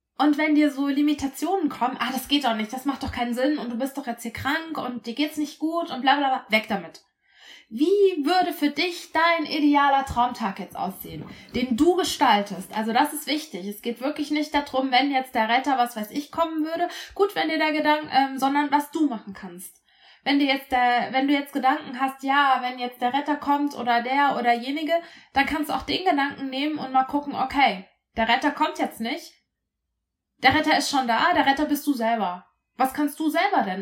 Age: 20-39